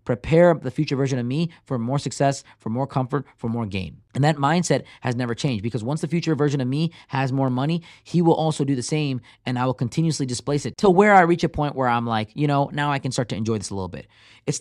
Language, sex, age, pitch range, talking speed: English, male, 20-39, 115-150 Hz, 265 wpm